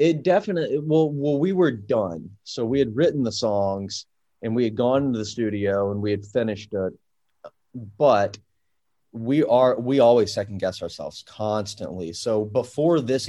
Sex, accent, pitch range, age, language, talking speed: male, American, 100-115 Hz, 30-49, English, 165 wpm